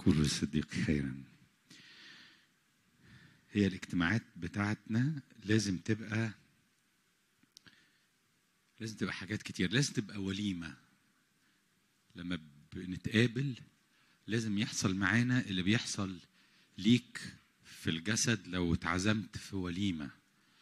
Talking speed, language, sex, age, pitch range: 85 wpm, English, male, 50-69, 90-115 Hz